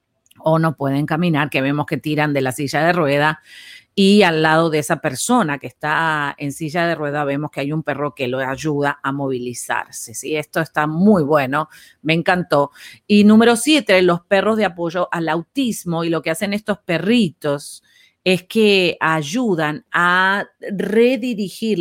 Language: Spanish